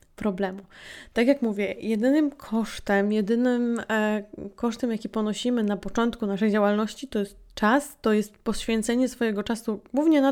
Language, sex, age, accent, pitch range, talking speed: Polish, female, 20-39, native, 200-230 Hz, 145 wpm